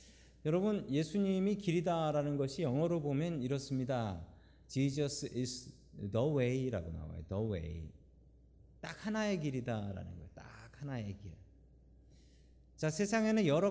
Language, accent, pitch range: Korean, native, 105-175 Hz